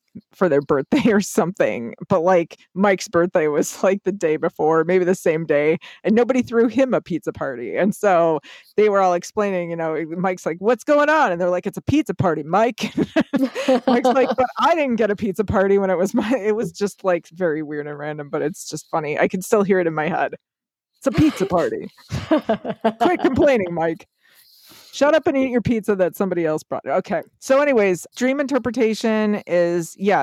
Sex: female